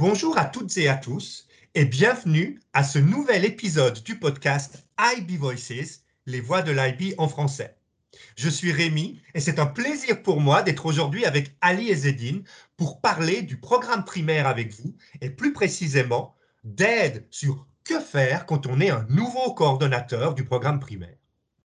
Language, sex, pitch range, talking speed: English, male, 135-185 Hz, 165 wpm